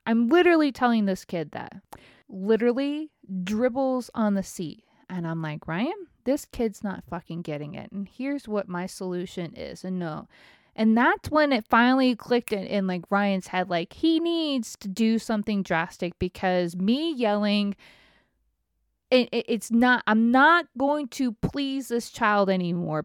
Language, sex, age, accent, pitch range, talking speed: English, female, 20-39, American, 180-235 Hz, 155 wpm